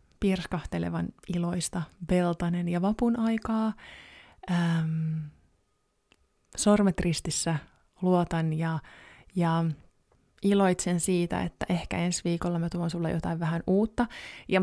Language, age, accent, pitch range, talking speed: Finnish, 20-39, native, 165-190 Hz, 95 wpm